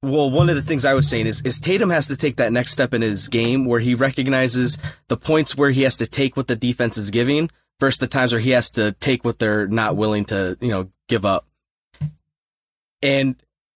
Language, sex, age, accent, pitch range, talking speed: English, male, 30-49, American, 115-140 Hz, 230 wpm